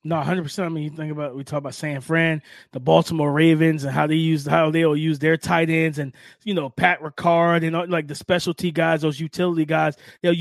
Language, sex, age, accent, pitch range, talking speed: English, male, 20-39, American, 160-230 Hz, 225 wpm